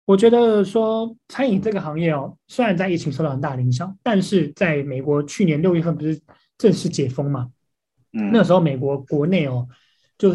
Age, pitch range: 20-39, 145-185 Hz